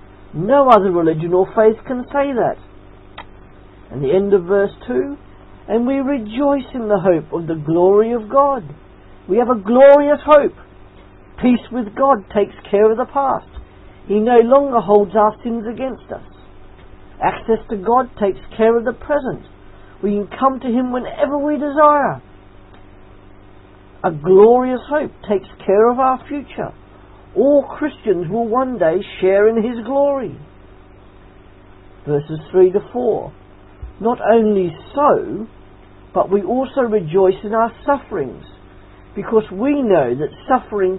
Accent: British